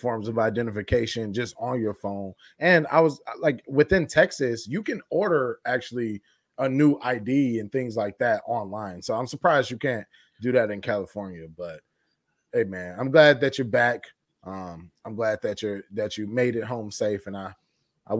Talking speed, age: 185 wpm, 20-39